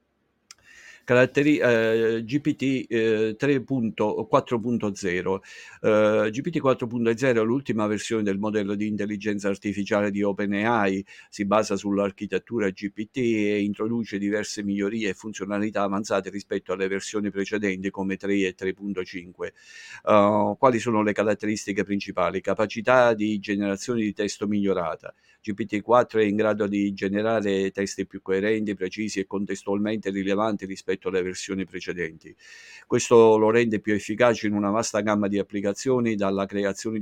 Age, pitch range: 50-69, 100-110 Hz